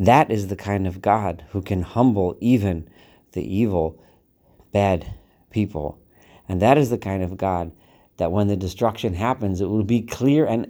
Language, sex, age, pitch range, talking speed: English, male, 40-59, 90-110 Hz, 175 wpm